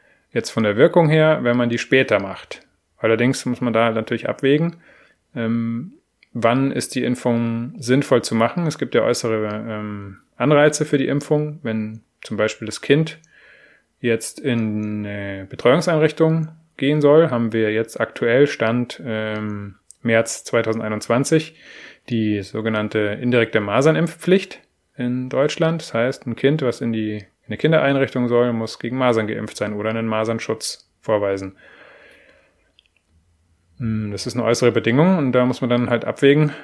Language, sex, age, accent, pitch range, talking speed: German, male, 20-39, German, 110-135 Hz, 140 wpm